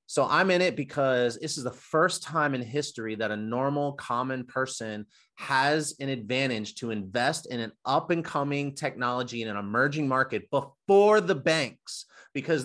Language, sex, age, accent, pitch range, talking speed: English, male, 30-49, American, 130-165 Hz, 170 wpm